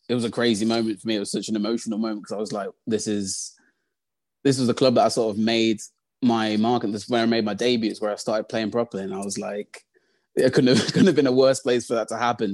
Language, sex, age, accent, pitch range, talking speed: English, male, 20-39, British, 110-115 Hz, 280 wpm